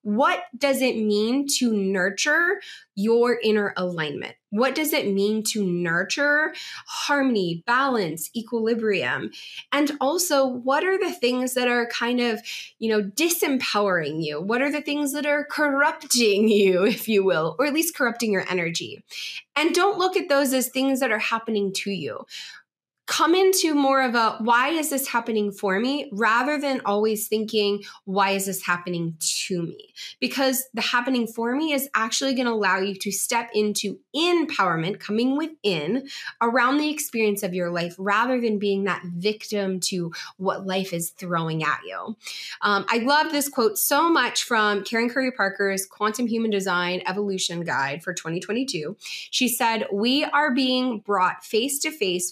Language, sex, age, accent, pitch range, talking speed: English, female, 20-39, American, 195-275 Hz, 165 wpm